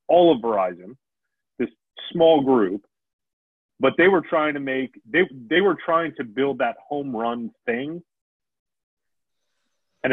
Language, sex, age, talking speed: English, male, 30-49, 135 wpm